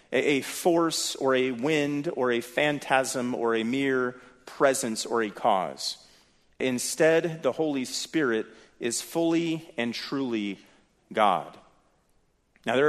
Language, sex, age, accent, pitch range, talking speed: English, male, 40-59, American, 120-160 Hz, 120 wpm